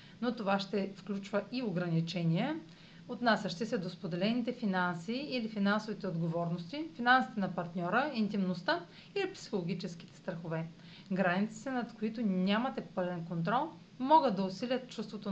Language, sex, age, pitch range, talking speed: Bulgarian, female, 40-59, 180-245 Hz, 120 wpm